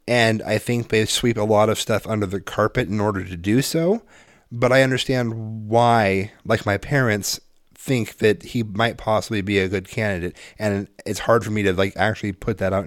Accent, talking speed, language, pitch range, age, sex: American, 205 wpm, English, 95-115 Hz, 30-49, male